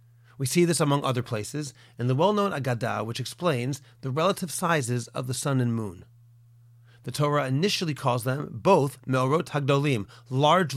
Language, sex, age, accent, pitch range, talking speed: English, male, 40-59, American, 120-165 Hz, 160 wpm